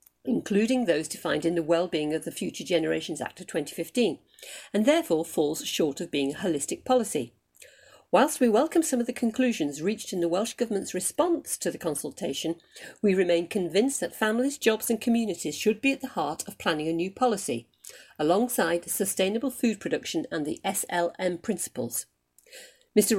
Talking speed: 170 wpm